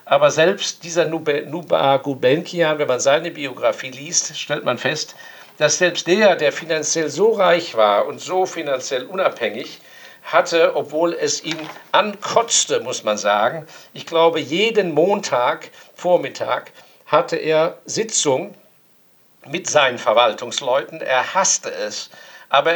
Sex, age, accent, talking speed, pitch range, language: male, 50-69, German, 130 wpm, 150-180 Hz, German